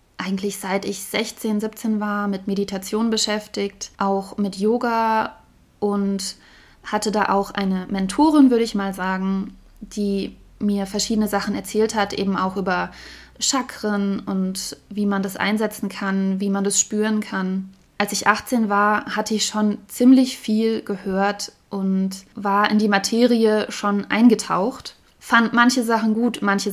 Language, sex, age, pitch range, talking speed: German, female, 20-39, 195-220 Hz, 145 wpm